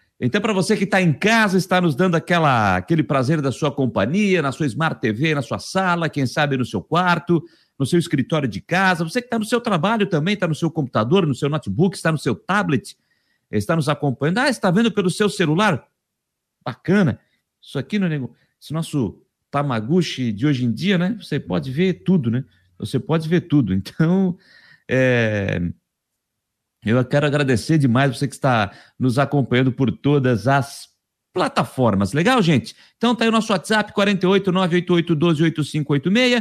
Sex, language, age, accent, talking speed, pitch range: male, Portuguese, 50-69, Brazilian, 170 wpm, 130-185 Hz